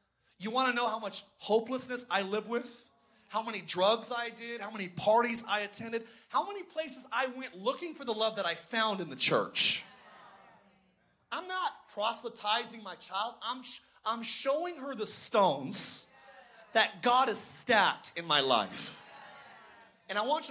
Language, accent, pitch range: English, American, 205-250 Hz